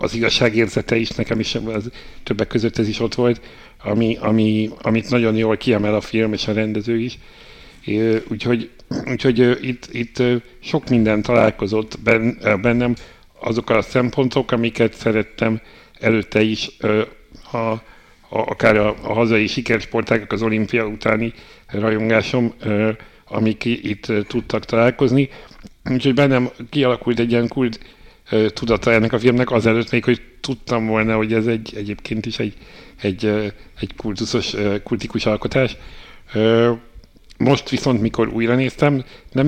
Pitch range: 110-120 Hz